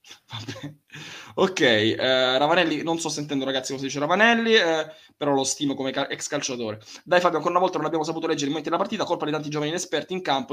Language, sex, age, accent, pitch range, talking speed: Italian, male, 20-39, native, 135-165 Hz, 220 wpm